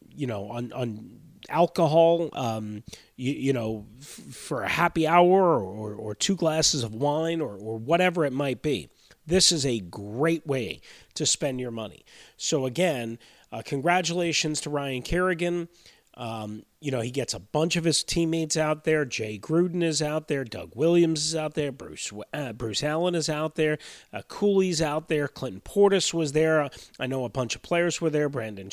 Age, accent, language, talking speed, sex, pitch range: 30-49, American, English, 185 wpm, male, 120-155 Hz